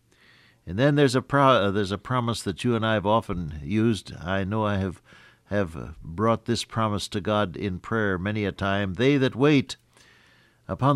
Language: English